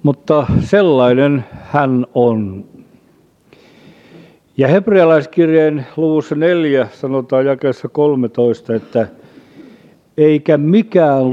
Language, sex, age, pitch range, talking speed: Finnish, male, 50-69, 120-155 Hz, 75 wpm